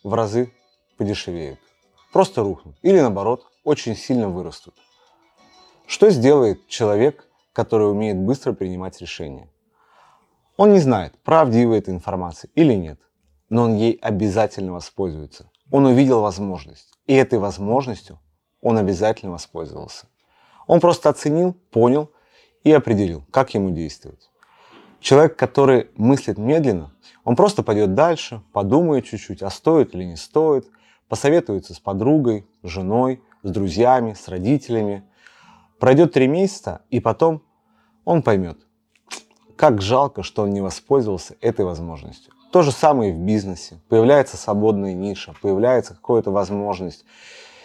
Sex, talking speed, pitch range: male, 125 wpm, 95-125 Hz